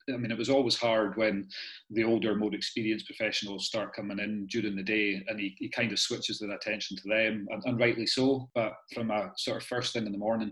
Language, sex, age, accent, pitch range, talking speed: English, male, 30-49, British, 100-115 Hz, 240 wpm